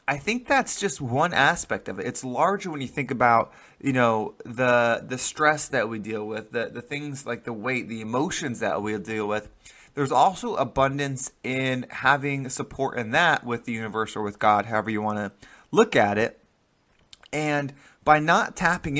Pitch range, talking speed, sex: 120-150 Hz, 190 wpm, male